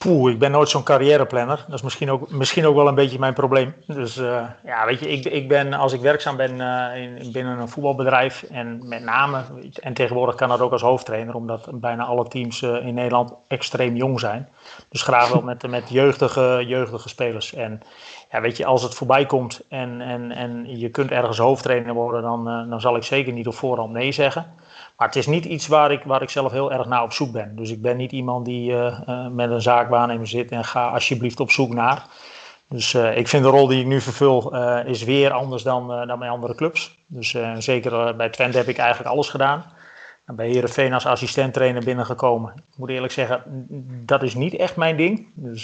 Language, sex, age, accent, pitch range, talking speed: English, male, 30-49, Dutch, 120-135 Hz, 220 wpm